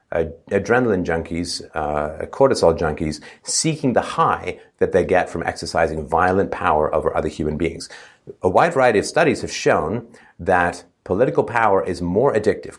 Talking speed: 150 wpm